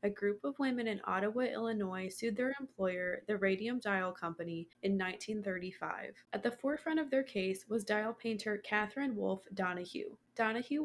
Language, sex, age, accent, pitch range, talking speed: English, female, 20-39, American, 195-230 Hz, 160 wpm